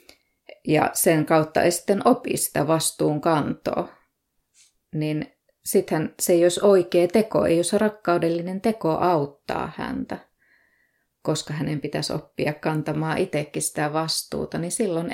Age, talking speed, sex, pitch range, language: 20-39, 125 wpm, female, 155-190 Hz, Finnish